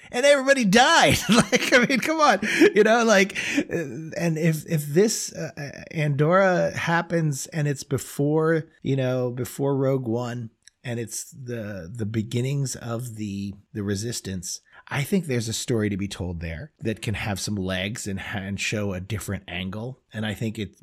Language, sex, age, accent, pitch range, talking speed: English, male, 30-49, American, 100-145 Hz, 170 wpm